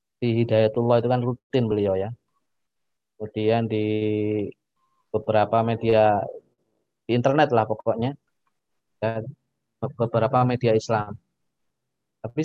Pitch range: 110-135 Hz